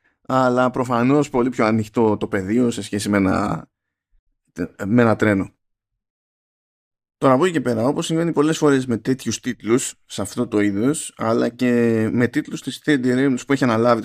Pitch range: 105-135 Hz